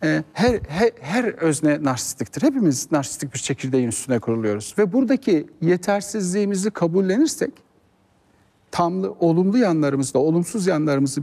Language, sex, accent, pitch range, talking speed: Turkish, male, native, 135-195 Hz, 105 wpm